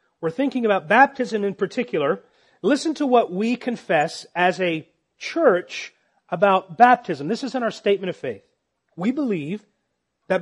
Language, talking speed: English, 150 wpm